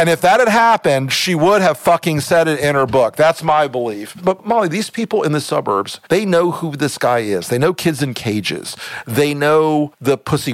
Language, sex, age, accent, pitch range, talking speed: English, male, 50-69, American, 120-170 Hz, 220 wpm